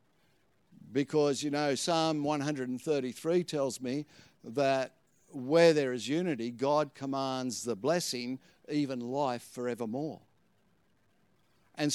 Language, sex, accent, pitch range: English, male, Australian, 125-150 Hz